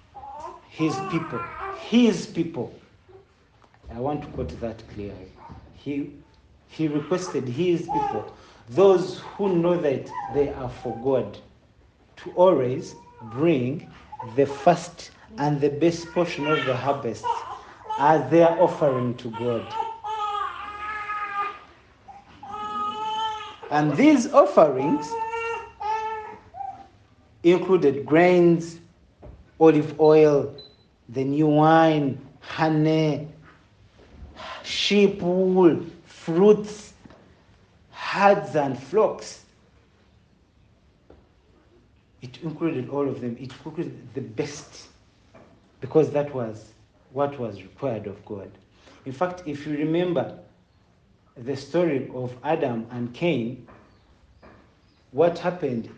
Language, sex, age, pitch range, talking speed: English, male, 50-69, 120-180 Hz, 95 wpm